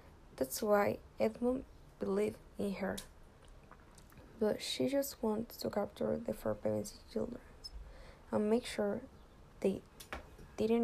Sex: female